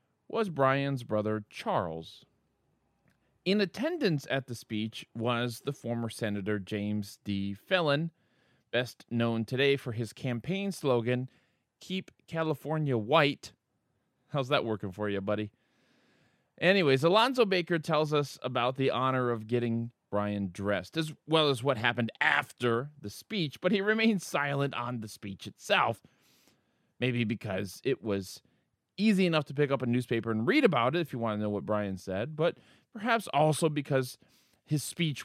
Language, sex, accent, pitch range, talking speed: English, male, American, 115-165 Hz, 150 wpm